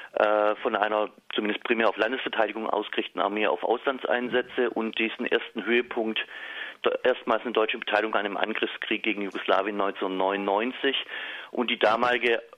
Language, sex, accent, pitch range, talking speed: German, male, German, 110-130 Hz, 130 wpm